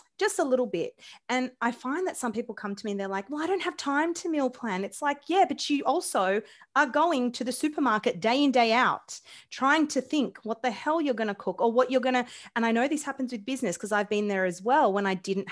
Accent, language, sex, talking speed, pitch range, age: Australian, English, female, 270 wpm, 200-260 Hz, 30-49